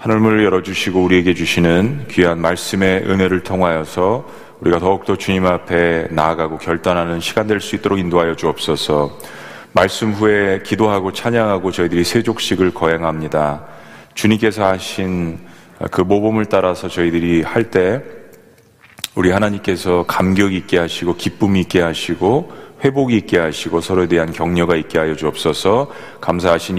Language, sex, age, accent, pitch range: Korean, male, 30-49, native, 80-100 Hz